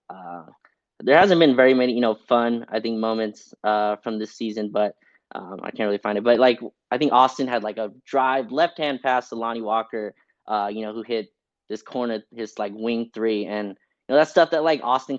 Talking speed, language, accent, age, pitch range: 220 wpm, English, American, 20-39, 105-120 Hz